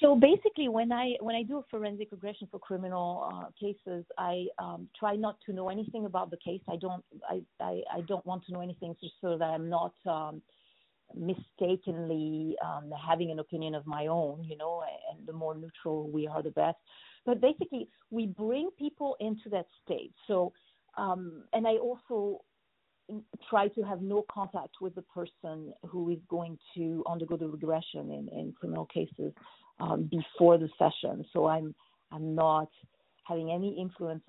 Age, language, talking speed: 40-59, English, 180 wpm